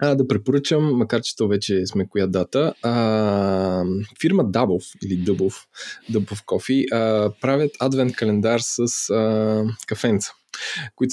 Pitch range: 105-130 Hz